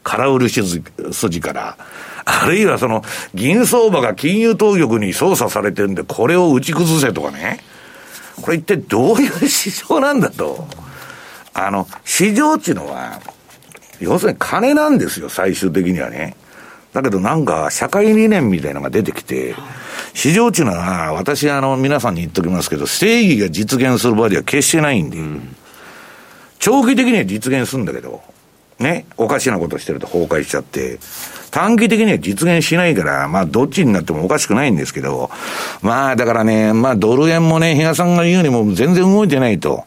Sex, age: male, 60-79